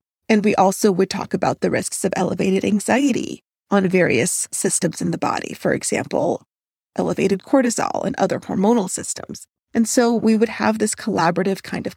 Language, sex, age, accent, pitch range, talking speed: English, female, 30-49, American, 195-235 Hz, 170 wpm